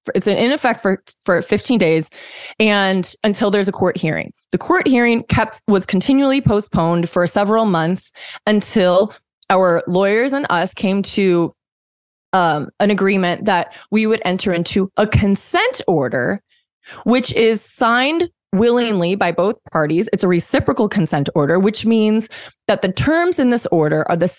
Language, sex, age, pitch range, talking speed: English, female, 20-39, 175-245 Hz, 155 wpm